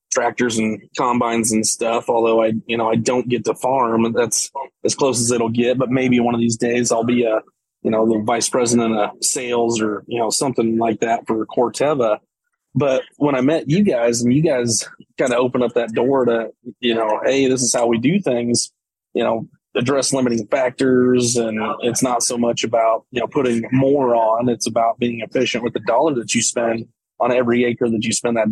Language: English